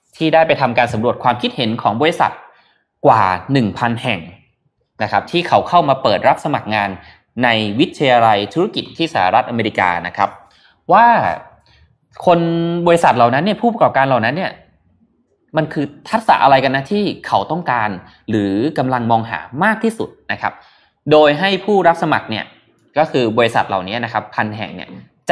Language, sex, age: Thai, male, 20-39